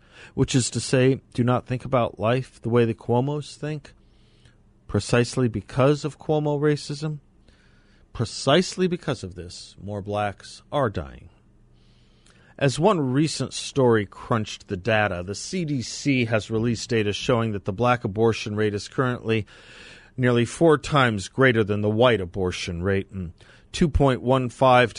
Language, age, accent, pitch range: English, 40-59, American, 100-130 Hz